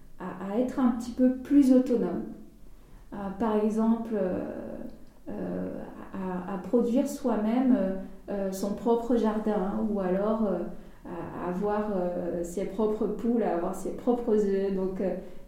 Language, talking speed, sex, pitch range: French, 145 wpm, female, 195-235 Hz